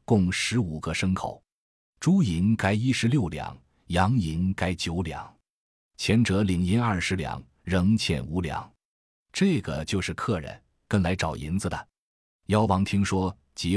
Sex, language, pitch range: male, Chinese, 85-110 Hz